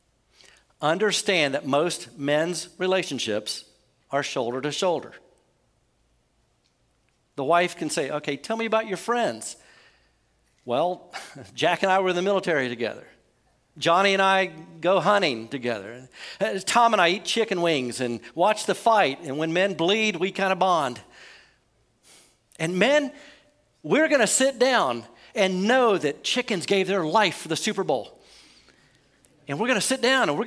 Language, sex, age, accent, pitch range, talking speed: English, male, 50-69, American, 175-265 Hz, 155 wpm